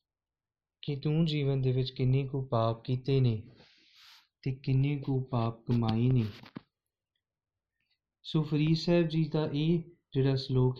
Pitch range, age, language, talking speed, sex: 115-155 Hz, 30-49, Punjabi, 130 wpm, male